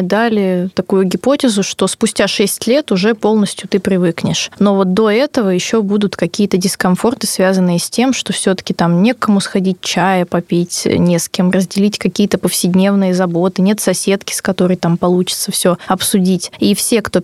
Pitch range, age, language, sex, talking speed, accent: 185-215 Hz, 20-39, Russian, female, 165 wpm, native